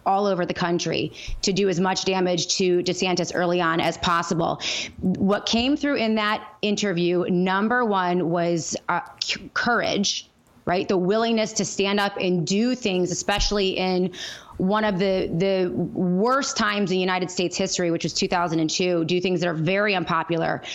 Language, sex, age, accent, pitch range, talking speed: English, female, 30-49, American, 180-205 Hz, 160 wpm